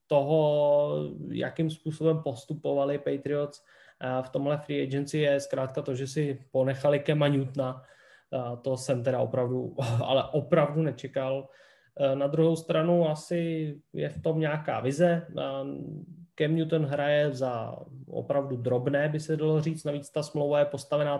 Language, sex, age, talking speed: Slovak, male, 20-39, 135 wpm